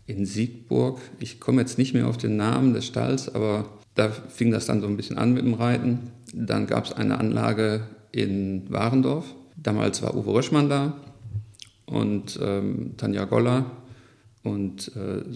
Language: German